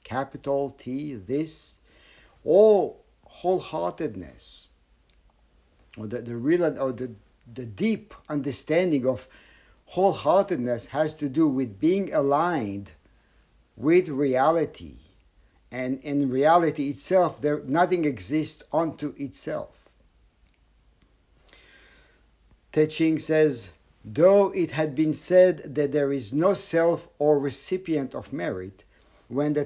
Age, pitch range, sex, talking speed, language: 60-79, 125-160 Hz, male, 105 wpm, English